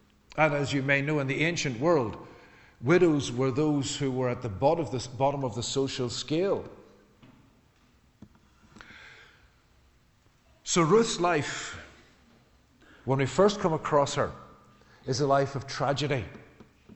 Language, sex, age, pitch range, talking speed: English, male, 50-69, 125-165 Hz, 125 wpm